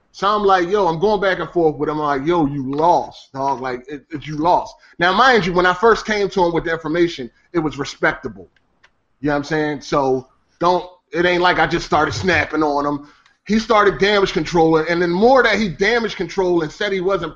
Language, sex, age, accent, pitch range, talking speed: English, male, 30-49, American, 145-195 Hz, 235 wpm